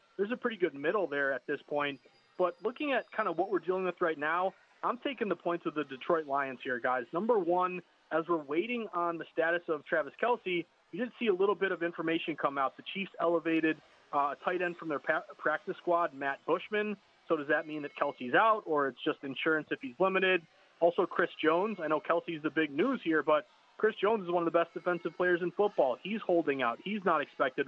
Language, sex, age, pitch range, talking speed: English, male, 30-49, 155-190 Hz, 230 wpm